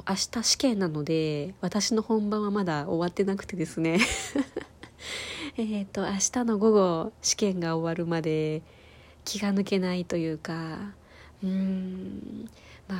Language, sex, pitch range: Japanese, female, 175-220 Hz